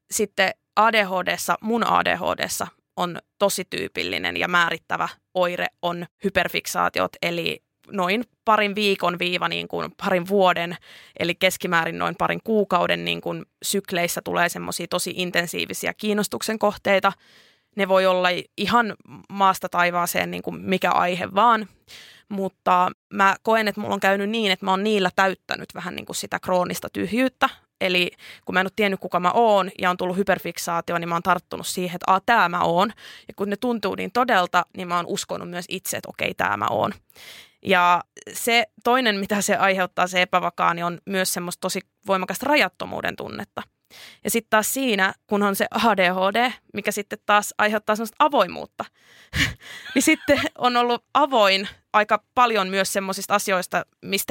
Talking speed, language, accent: 160 wpm, Finnish, native